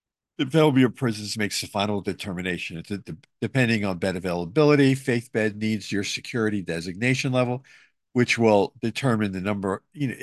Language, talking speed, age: English, 170 wpm, 50-69